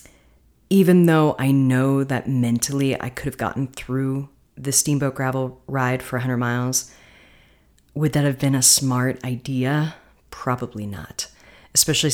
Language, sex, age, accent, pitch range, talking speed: English, female, 30-49, American, 120-150 Hz, 140 wpm